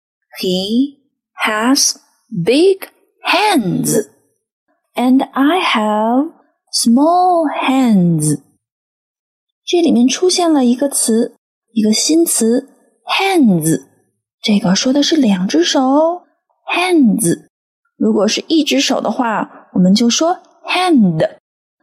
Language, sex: Chinese, female